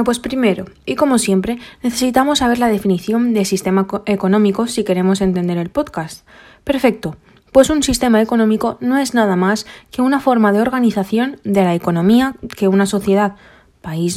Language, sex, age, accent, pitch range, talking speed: Spanish, female, 20-39, Spanish, 195-250 Hz, 165 wpm